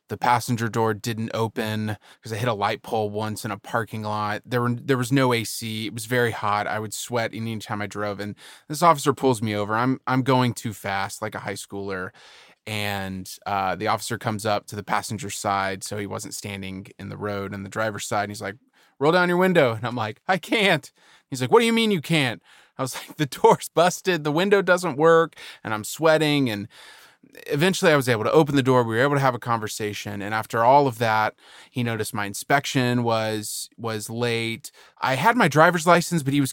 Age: 20-39